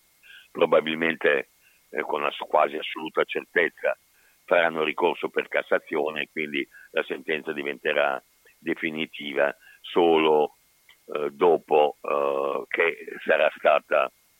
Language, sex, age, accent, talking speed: Italian, male, 60-79, native, 95 wpm